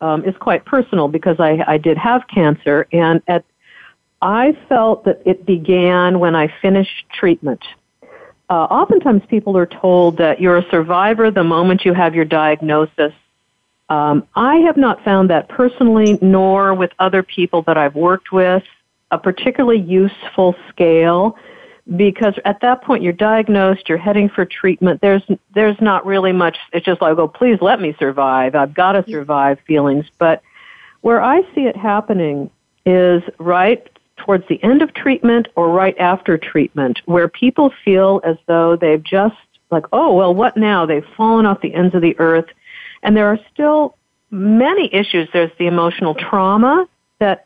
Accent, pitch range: American, 165-215 Hz